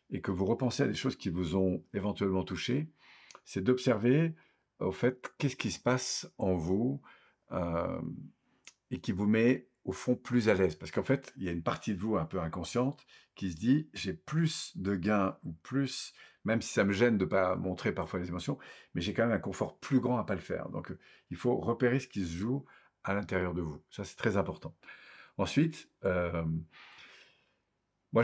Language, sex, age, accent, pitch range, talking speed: French, male, 50-69, French, 95-125 Hz, 205 wpm